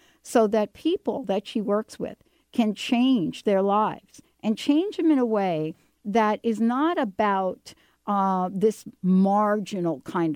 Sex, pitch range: female, 185-230 Hz